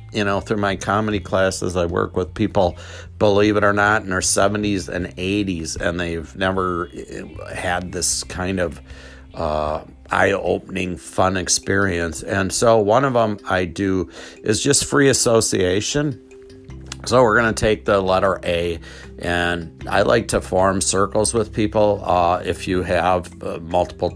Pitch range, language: 85-100 Hz, English